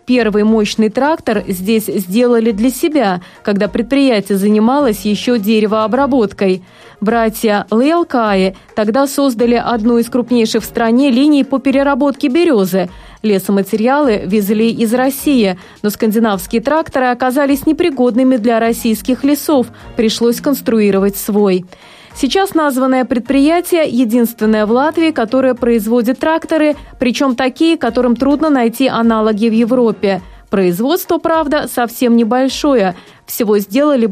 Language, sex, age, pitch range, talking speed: Russian, female, 20-39, 215-270 Hz, 115 wpm